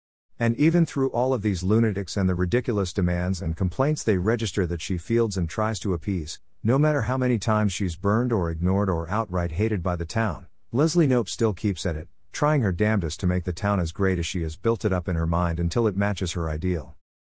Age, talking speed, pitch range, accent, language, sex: 50-69, 230 wpm, 85-110 Hz, American, English, male